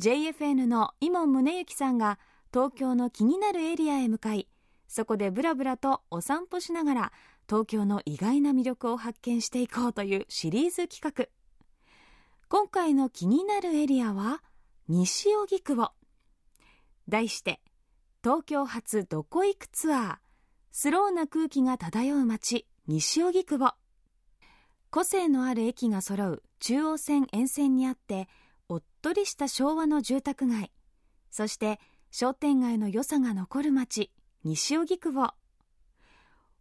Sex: female